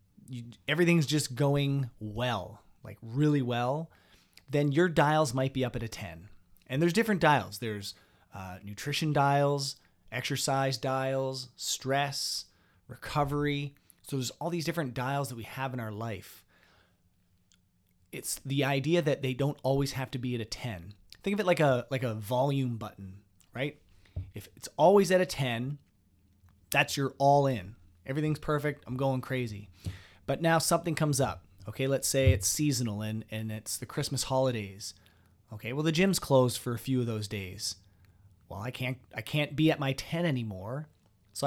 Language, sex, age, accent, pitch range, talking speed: English, male, 30-49, American, 100-140 Hz, 170 wpm